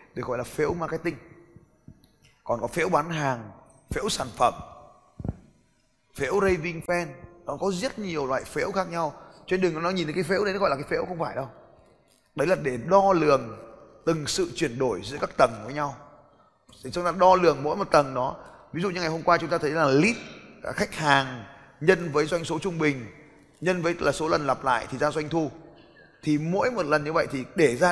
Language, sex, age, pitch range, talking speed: Vietnamese, male, 20-39, 145-180 Hz, 220 wpm